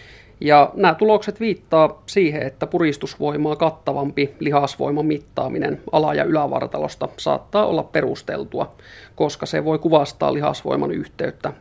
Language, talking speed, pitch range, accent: Finnish, 115 wpm, 140-165 Hz, native